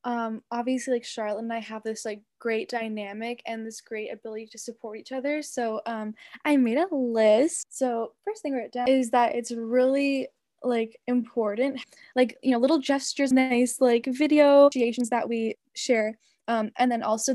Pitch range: 220-260 Hz